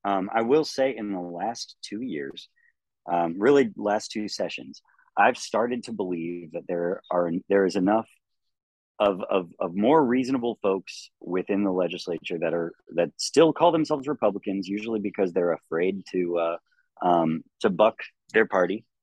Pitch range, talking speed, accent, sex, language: 90-120 Hz, 160 wpm, American, male, English